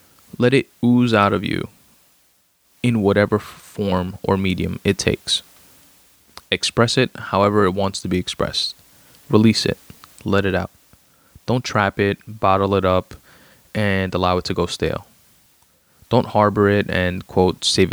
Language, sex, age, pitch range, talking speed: English, male, 20-39, 100-115 Hz, 145 wpm